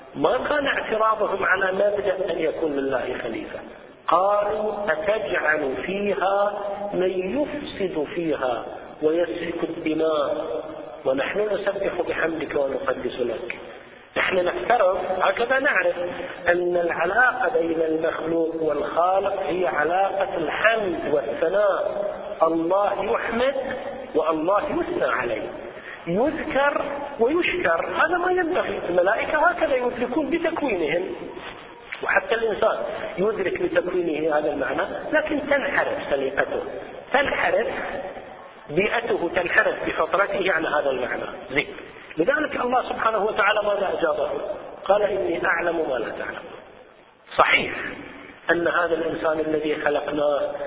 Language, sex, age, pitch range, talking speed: Arabic, male, 40-59, 170-270 Hz, 100 wpm